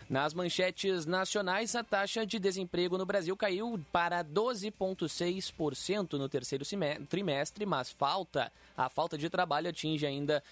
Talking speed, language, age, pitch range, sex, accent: 135 wpm, Portuguese, 20-39, 135-175 Hz, male, Brazilian